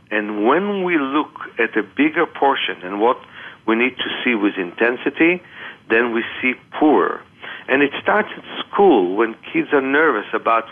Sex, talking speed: male, 170 wpm